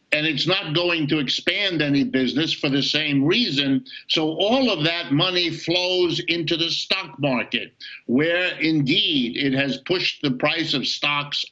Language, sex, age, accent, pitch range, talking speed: English, male, 50-69, American, 140-180 Hz, 160 wpm